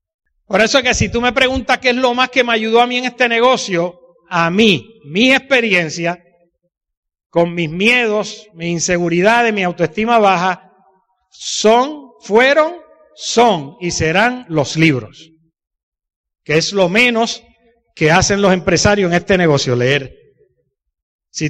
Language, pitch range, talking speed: Spanish, 185-260 Hz, 145 wpm